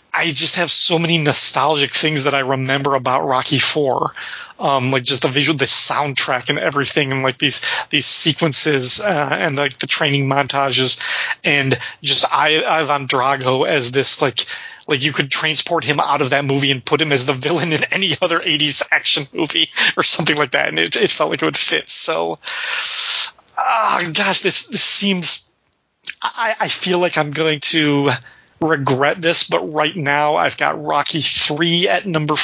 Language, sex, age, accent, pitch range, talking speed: English, male, 30-49, American, 135-160 Hz, 180 wpm